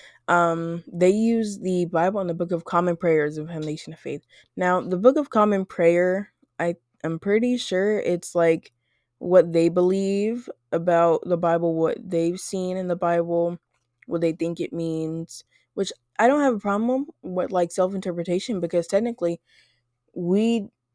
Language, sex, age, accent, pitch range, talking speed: English, female, 20-39, American, 155-185 Hz, 165 wpm